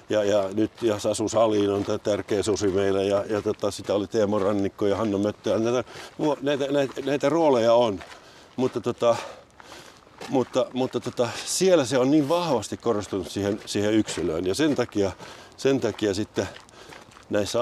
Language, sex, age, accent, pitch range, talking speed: Finnish, male, 60-79, native, 100-120 Hz, 150 wpm